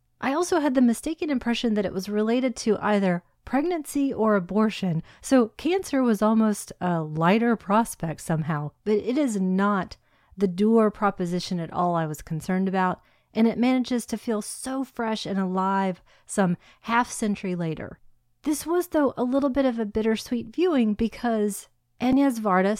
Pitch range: 175-235 Hz